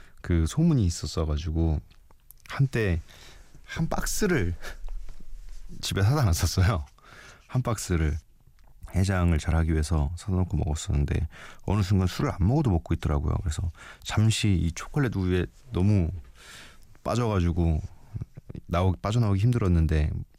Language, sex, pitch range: Korean, male, 80-105 Hz